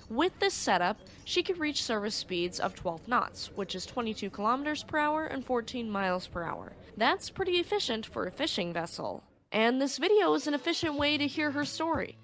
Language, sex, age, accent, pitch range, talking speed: English, female, 10-29, American, 190-290 Hz, 195 wpm